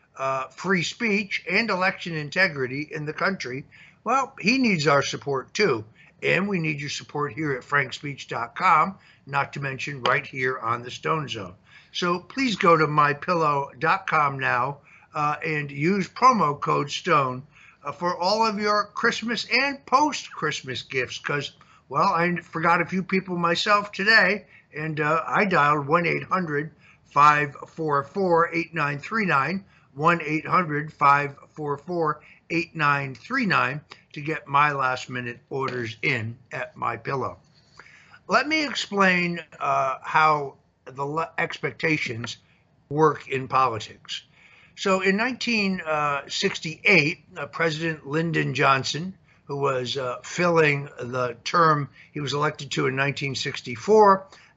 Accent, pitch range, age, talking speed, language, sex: American, 140-175 Hz, 60-79, 120 wpm, English, male